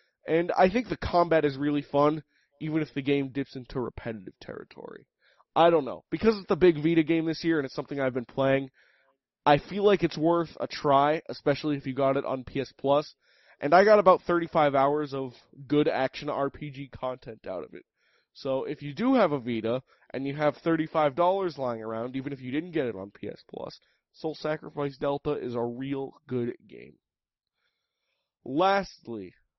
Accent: American